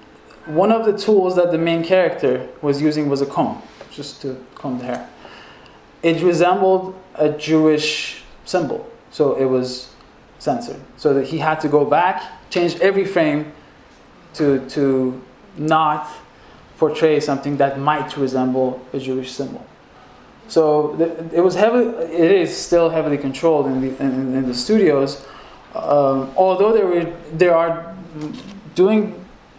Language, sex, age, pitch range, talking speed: English, male, 20-39, 135-170 Hz, 140 wpm